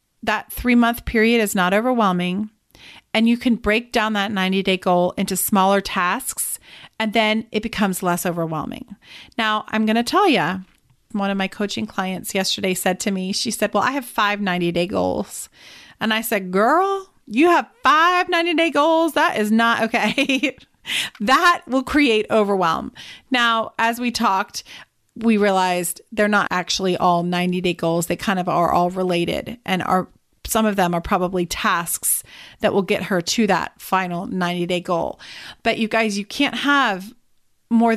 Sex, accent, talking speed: female, American, 165 wpm